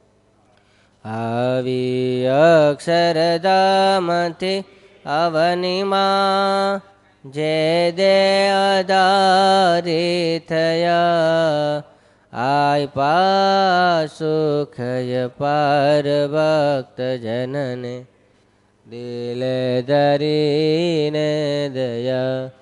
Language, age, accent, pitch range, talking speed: Gujarati, 20-39, native, 130-180 Hz, 35 wpm